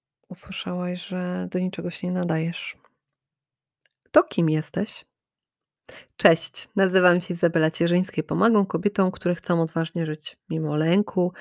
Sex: female